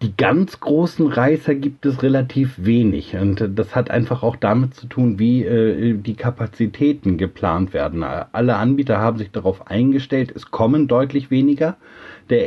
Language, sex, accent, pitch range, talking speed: German, male, German, 100-125 Hz, 160 wpm